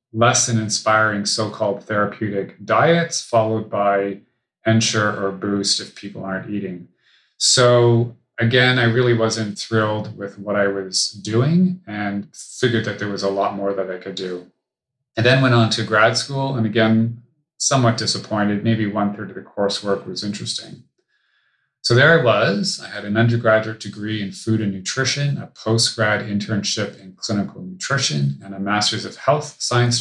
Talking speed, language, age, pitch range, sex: 160 wpm, English, 30-49, 100-115 Hz, male